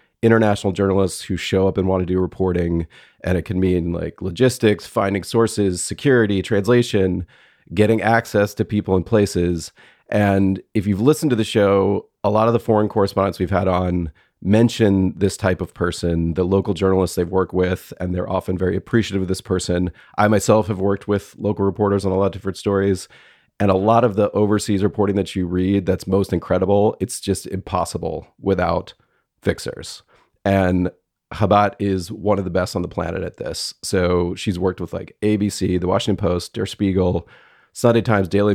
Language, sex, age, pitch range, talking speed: English, male, 30-49, 90-105 Hz, 185 wpm